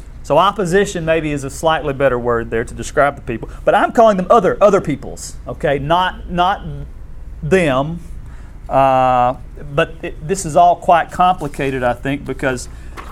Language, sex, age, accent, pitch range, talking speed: English, male, 40-59, American, 120-170 Hz, 160 wpm